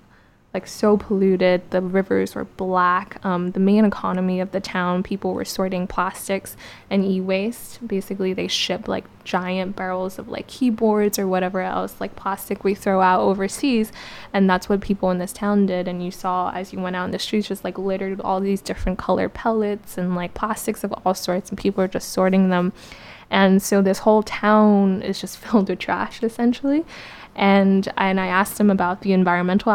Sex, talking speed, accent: female, 190 wpm, American